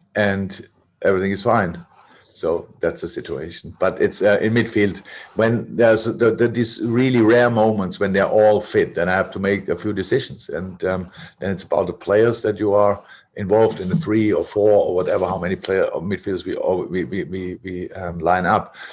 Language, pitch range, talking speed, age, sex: English, 90-120 Hz, 205 wpm, 50-69, male